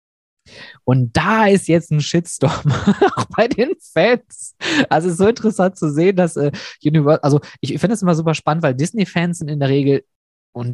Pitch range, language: 125-165 Hz, German